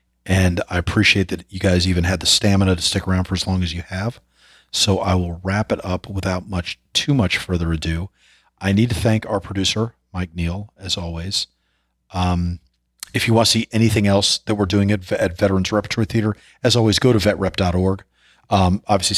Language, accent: English, American